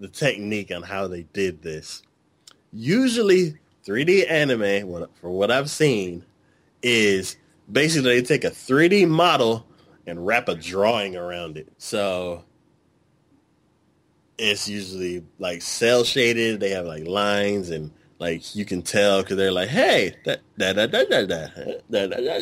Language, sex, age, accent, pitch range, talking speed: English, male, 20-39, American, 95-140 Hz, 135 wpm